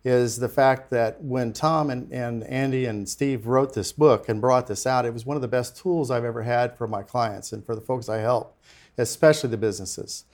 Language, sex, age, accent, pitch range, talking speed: English, male, 50-69, American, 120-150 Hz, 230 wpm